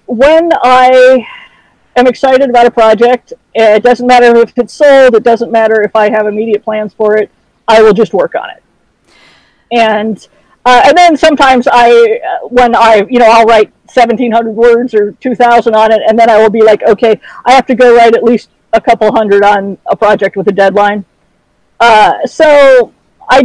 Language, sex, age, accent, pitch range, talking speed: English, female, 50-69, American, 215-250 Hz, 190 wpm